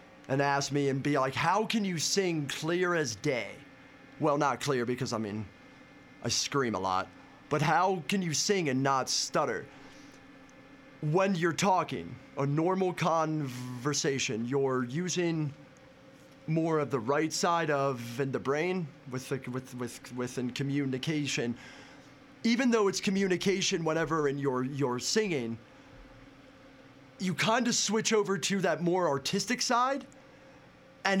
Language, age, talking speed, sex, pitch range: English, 30-49, 145 wpm, male, 135-185 Hz